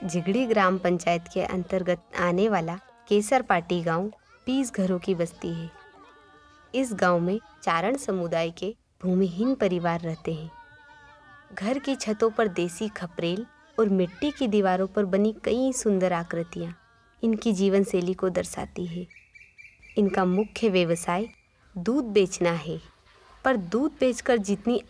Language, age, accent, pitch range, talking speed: Hindi, 20-39, native, 180-225 Hz, 135 wpm